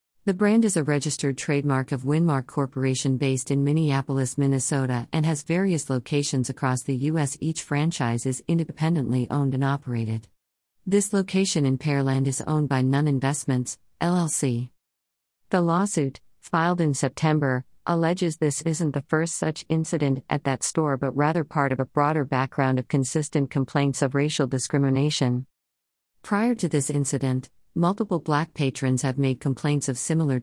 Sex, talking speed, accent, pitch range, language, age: female, 150 wpm, American, 130-160 Hz, English, 50-69